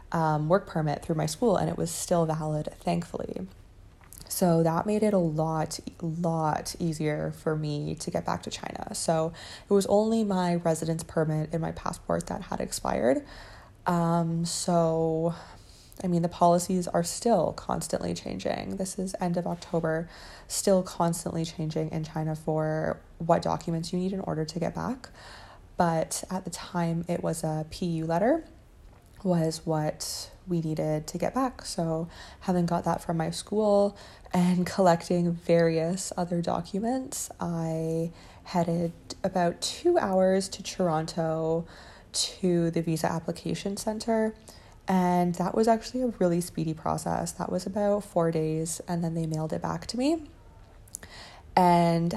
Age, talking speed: 20-39, 150 wpm